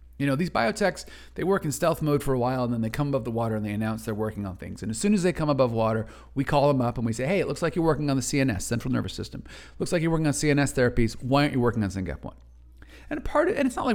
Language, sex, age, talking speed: English, male, 40-59, 305 wpm